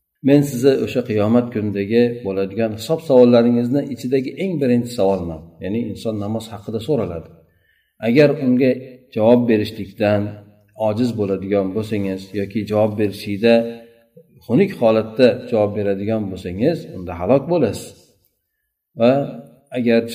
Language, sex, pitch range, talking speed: Russian, male, 100-125 Hz, 145 wpm